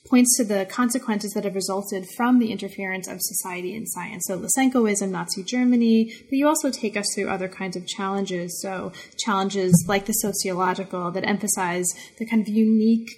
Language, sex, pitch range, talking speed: English, female, 195-235 Hz, 180 wpm